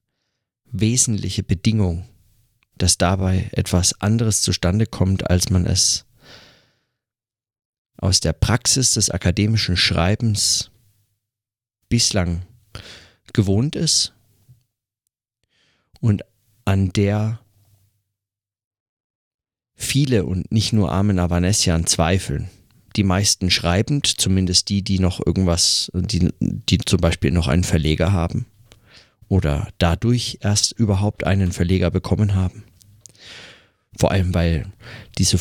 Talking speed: 100 wpm